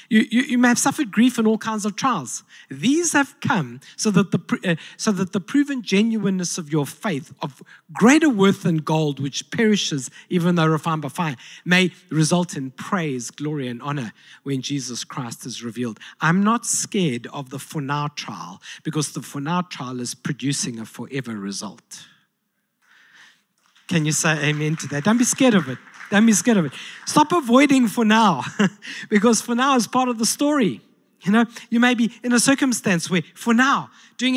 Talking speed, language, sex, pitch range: 190 wpm, English, male, 155-235 Hz